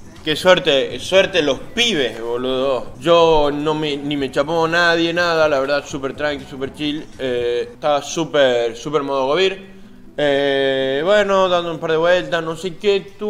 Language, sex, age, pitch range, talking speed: English, male, 20-39, 135-190 Hz, 165 wpm